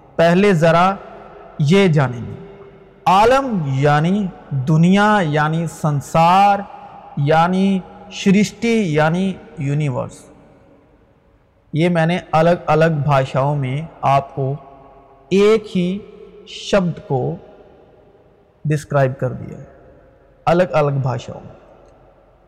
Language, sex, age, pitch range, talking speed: Urdu, male, 50-69, 165-225 Hz, 85 wpm